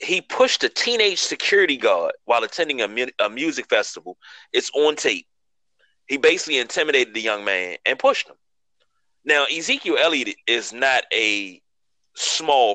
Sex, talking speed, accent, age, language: male, 150 wpm, American, 30-49, English